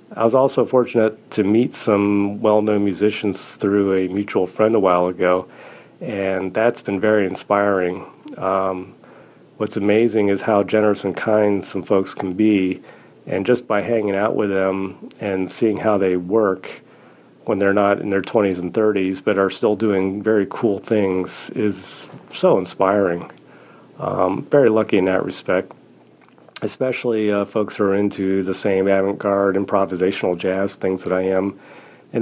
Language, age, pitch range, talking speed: English, 40-59, 95-105 Hz, 160 wpm